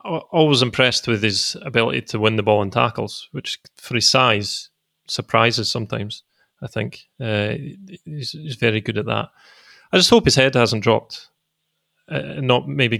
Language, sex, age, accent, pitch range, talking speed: English, male, 30-49, British, 105-130 Hz, 165 wpm